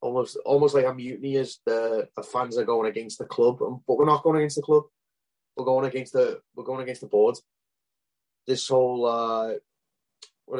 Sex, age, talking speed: male, 20-39, 190 wpm